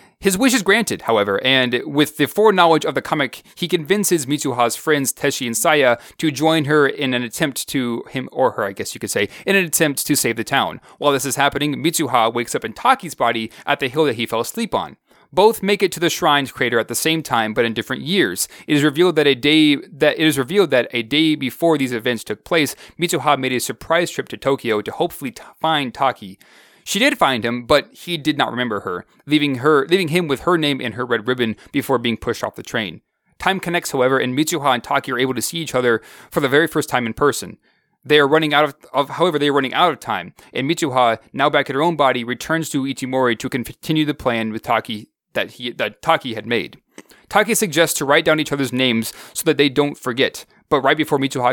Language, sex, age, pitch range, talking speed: English, male, 30-49, 125-160 Hz, 240 wpm